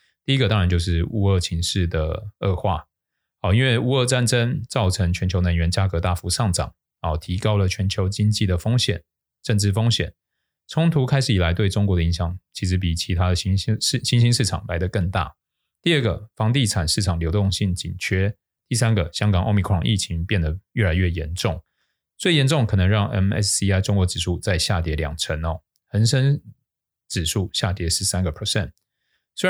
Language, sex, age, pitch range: Chinese, male, 20-39, 90-110 Hz